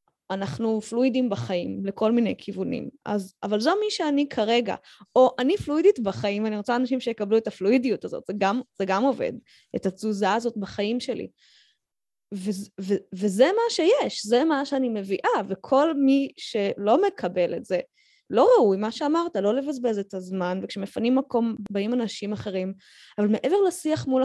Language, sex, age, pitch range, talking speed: Hebrew, female, 20-39, 215-290 Hz, 160 wpm